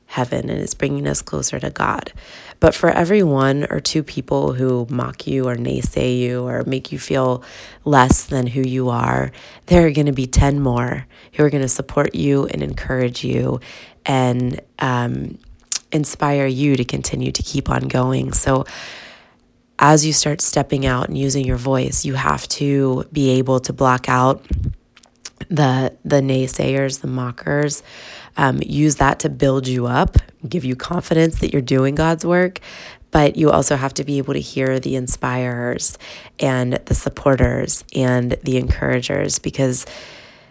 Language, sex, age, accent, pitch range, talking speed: English, female, 20-39, American, 125-145 Hz, 165 wpm